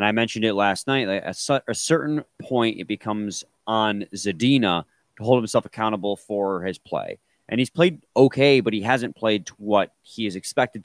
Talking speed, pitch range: 195 wpm, 105-145 Hz